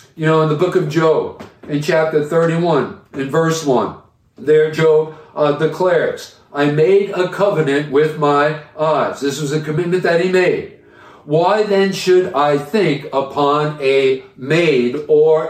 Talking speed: 155 wpm